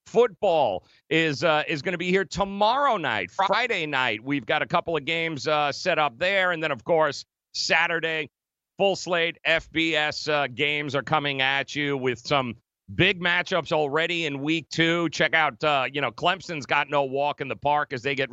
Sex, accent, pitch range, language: male, American, 145-200 Hz, English